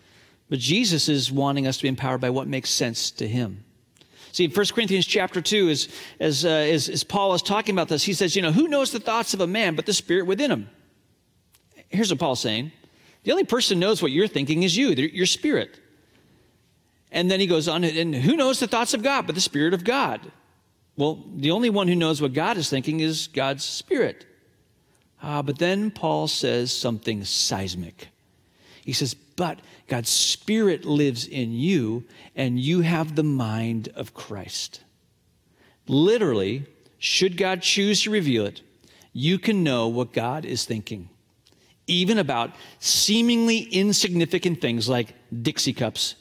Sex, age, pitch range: male, 40-59, 125-185 Hz